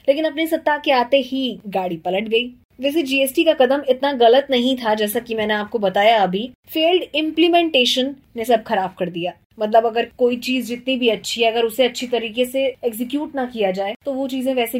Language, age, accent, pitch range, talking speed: Hindi, 20-39, native, 205-260 Hz, 205 wpm